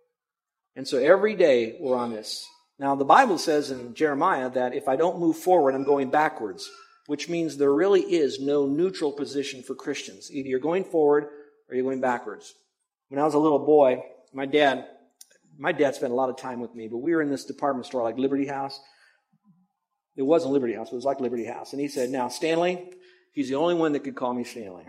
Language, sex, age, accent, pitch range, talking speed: English, male, 50-69, American, 135-185 Hz, 215 wpm